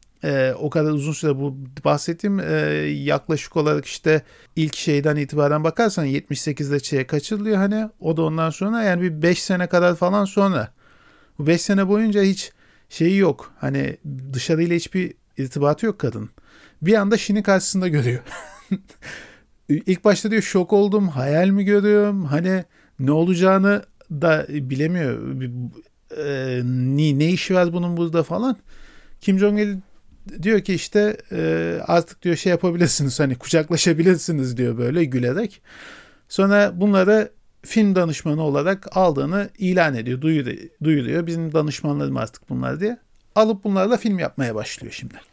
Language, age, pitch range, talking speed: Turkish, 50-69, 145-195 Hz, 135 wpm